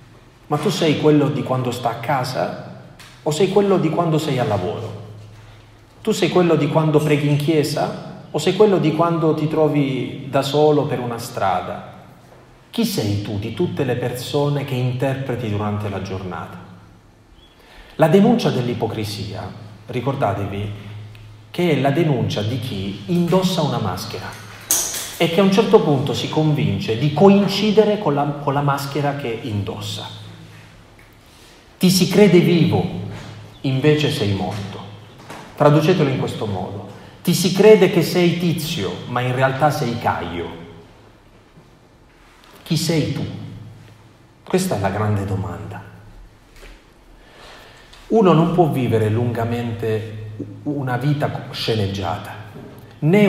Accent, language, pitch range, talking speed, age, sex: native, Italian, 105-155 Hz, 135 wpm, 30-49, male